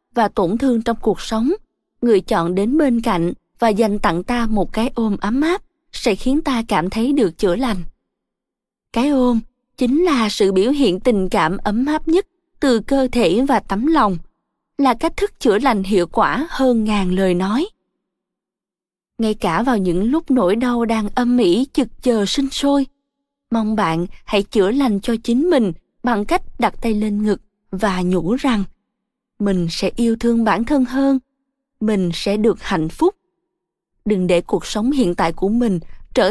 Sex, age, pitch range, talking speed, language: female, 20-39, 205-265 Hz, 180 wpm, Vietnamese